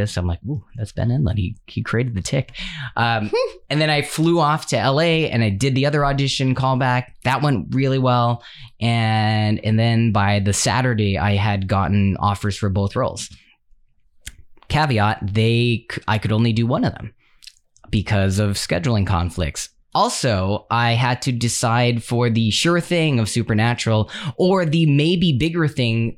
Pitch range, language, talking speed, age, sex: 100-125 Hz, English, 165 wpm, 10-29, male